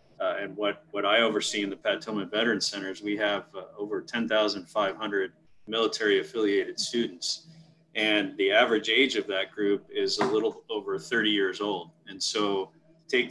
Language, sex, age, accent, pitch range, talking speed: English, male, 30-49, American, 100-160 Hz, 185 wpm